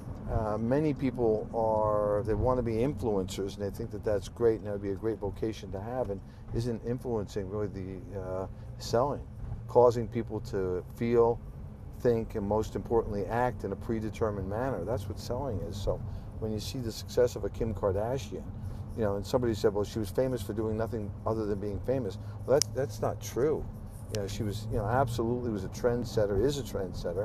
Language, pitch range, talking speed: English, 105-120 Hz, 205 wpm